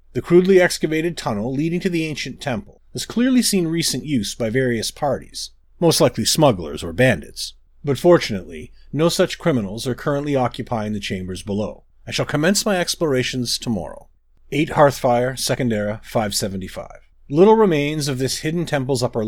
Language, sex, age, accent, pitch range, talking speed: English, male, 40-59, American, 115-155 Hz, 160 wpm